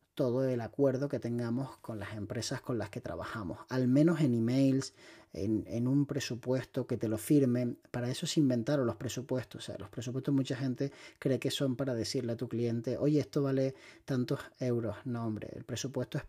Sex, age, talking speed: male, 30-49, 200 wpm